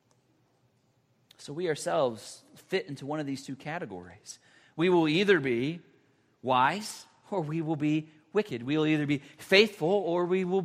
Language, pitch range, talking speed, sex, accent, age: English, 145-225 Hz, 160 wpm, male, American, 40-59